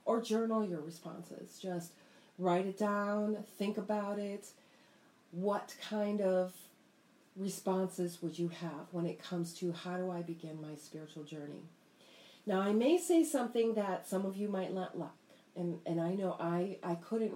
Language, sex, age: English, female, 40-59